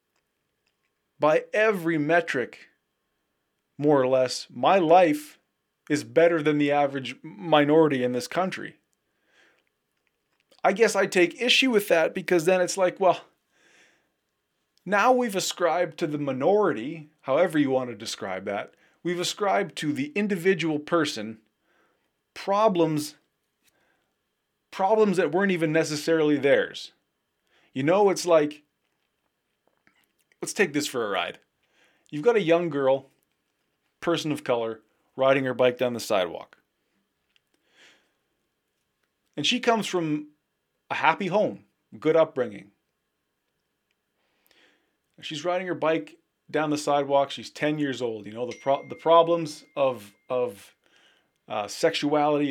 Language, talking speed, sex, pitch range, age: English, 125 wpm, male, 135-175 Hz, 30-49